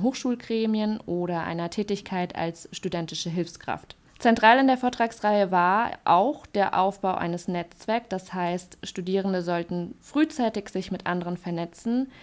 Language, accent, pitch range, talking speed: German, German, 175-225 Hz, 130 wpm